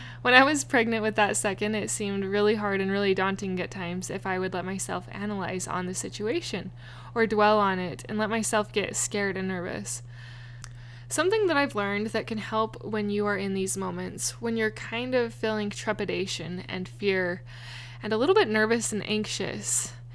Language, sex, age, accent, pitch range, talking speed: English, female, 20-39, American, 170-225 Hz, 190 wpm